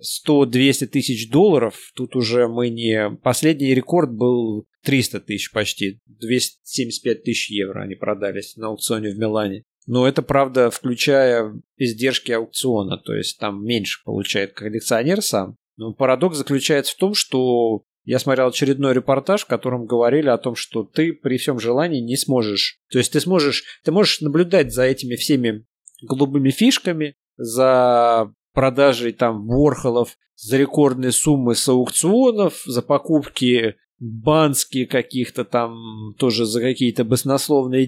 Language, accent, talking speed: Russian, native, 135 wpm